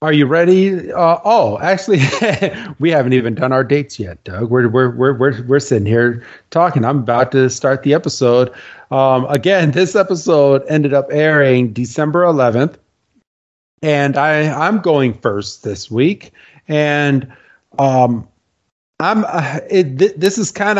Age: 40-59